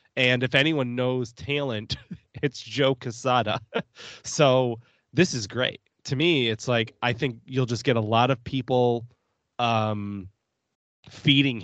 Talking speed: 140 wpm